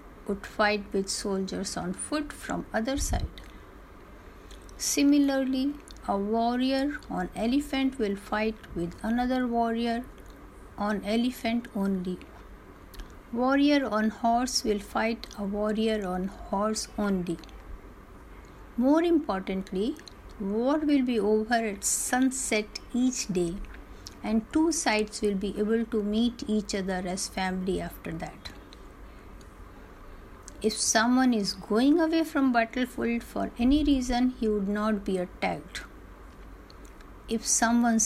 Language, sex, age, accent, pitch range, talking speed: Hindi, female, 60-79, native, 185-245 Hz, 115 wpm